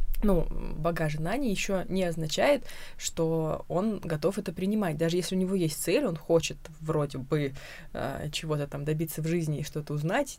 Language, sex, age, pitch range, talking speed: Russian, female, 20-39, 165-215 Hz, 180 wpm